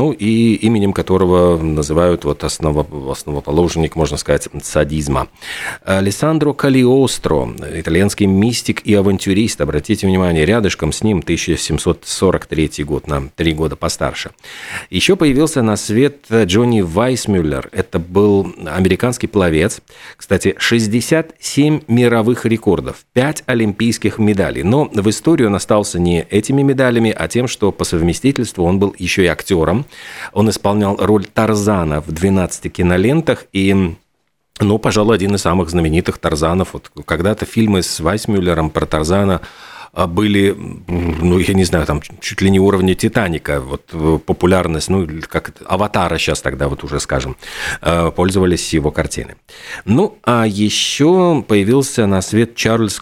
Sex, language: male, Russian